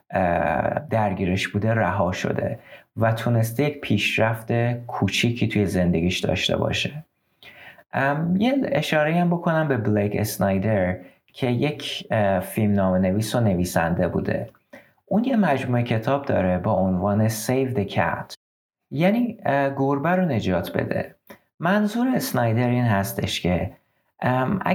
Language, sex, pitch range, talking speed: Persian, male, 100-145 Hz, 115 wpm